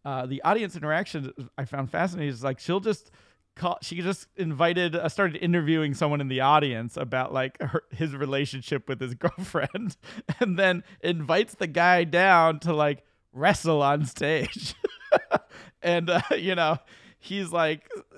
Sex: male